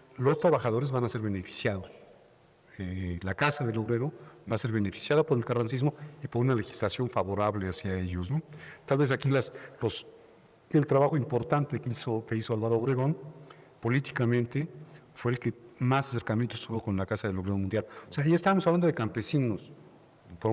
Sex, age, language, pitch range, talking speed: male, 50-69, Spanish, 110-145 Hz, 180 wpm